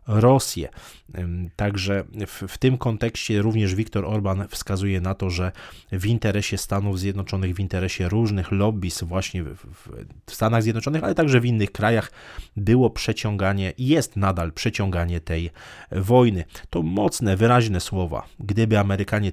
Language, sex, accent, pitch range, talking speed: Polish, male, native, 95-110 Hz, 140 wpm